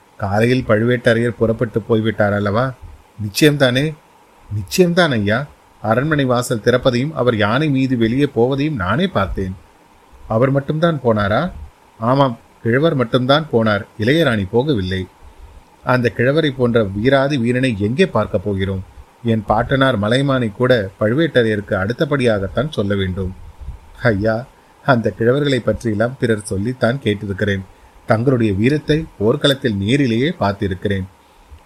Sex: male